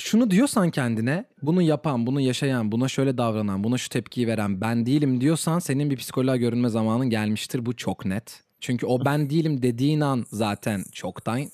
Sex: male